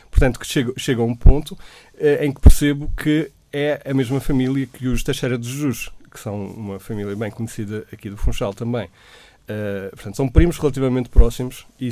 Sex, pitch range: male, 105-135 Hz